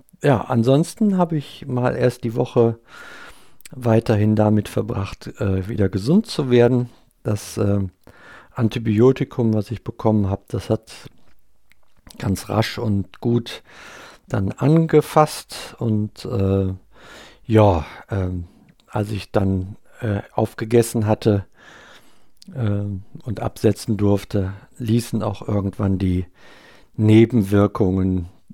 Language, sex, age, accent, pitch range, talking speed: German, male, 60-79, German, 100-125 Hz, 105 wpm